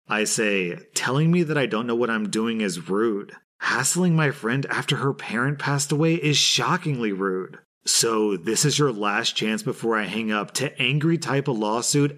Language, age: English, 30-49